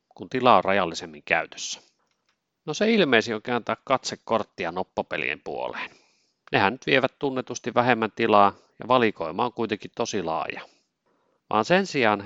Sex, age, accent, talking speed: male, 30-49, native, 135 wpm